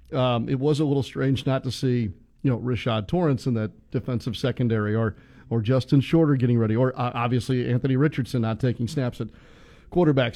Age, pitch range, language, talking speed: 40-59, 120-145 Hz, English, 185 wpm